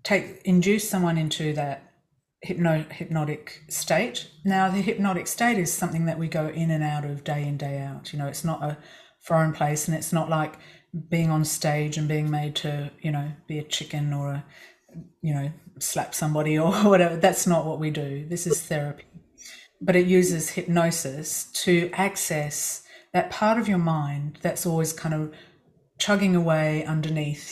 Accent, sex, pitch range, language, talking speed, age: Australian, female, 150-180 Hz, English, 175 wpm, 30-49